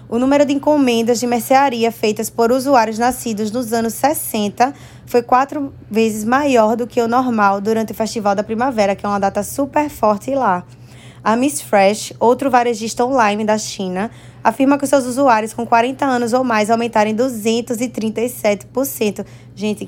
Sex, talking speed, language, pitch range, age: female, 165 wpm, Portuguese, 210-250 Hz, 20-39